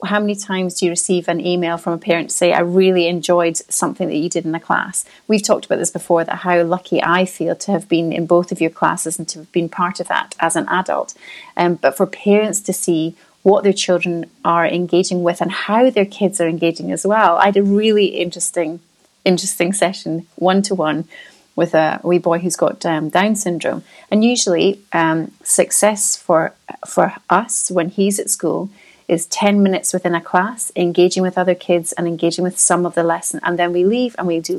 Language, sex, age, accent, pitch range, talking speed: English, female, 30-49, British, 170-200 Hz, 215 wpm